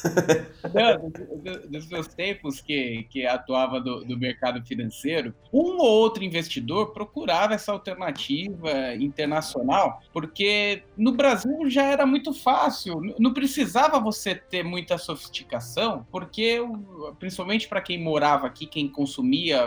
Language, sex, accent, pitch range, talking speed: Portuguese, male, Brazilian, 145-220 Hz, 120 wpm